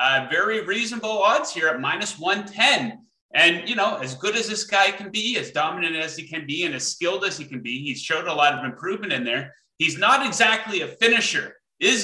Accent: American